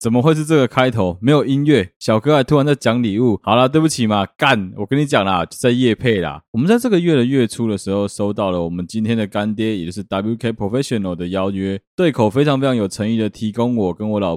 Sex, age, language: male, 20-39, Chinese